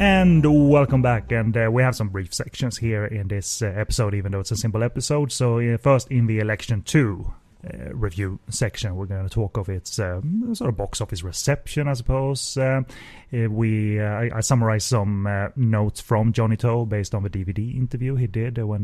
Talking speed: 205 wpm